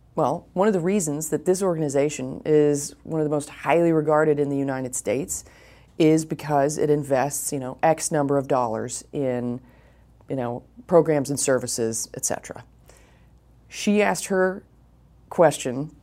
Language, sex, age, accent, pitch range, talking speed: English, female, 30-49, American, 135-170 Hz, 155 wpm